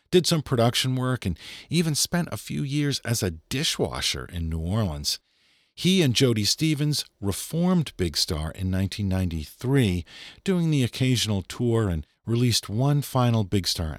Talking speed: 150 wpm